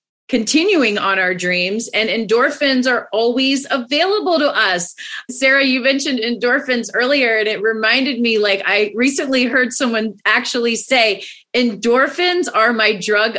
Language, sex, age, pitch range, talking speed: English, female, 30-49, 220-280 Hz, 140 wpm